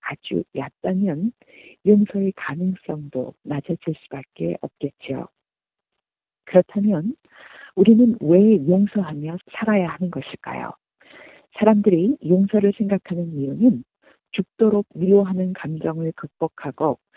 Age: 40-59